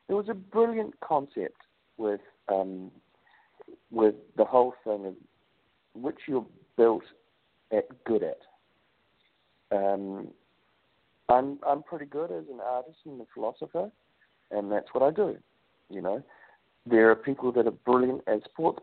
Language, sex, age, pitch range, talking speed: English, male, 50-69, 110-175 Hz, 140 wpm